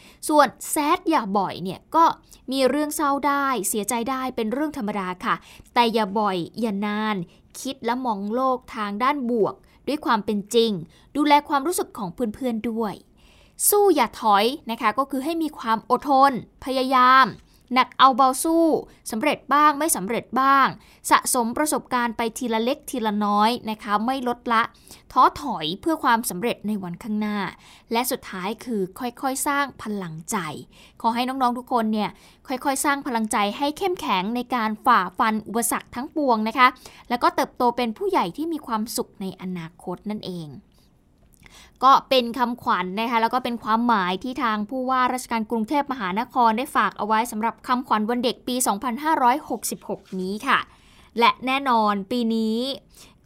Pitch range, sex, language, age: 220-275 Hz, female, Thai, 20-39